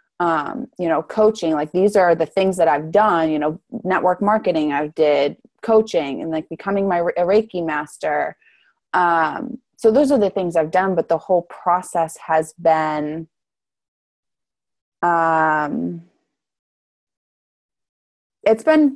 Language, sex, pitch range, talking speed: English, female, 155-185 Hz, 135 wpm